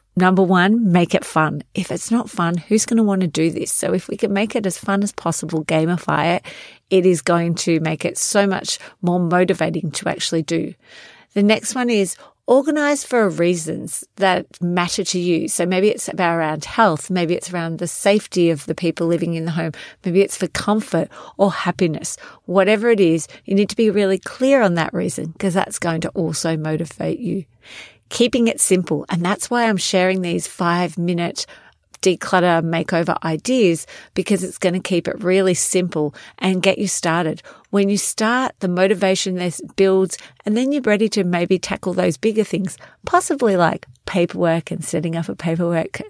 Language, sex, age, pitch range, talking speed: English, female, 40-59, 170-200 Hz, 190 wpm